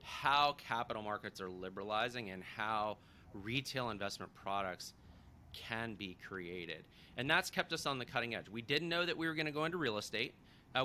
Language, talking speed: English, 190 wpm